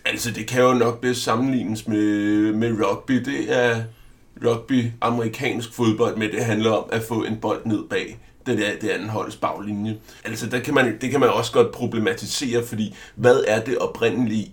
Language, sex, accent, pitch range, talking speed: Danish, male, native, 105-120 Hz, 175 wpm